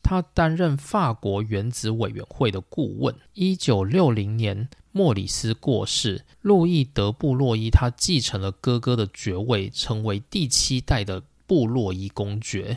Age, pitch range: 20-39, 105-135 Hz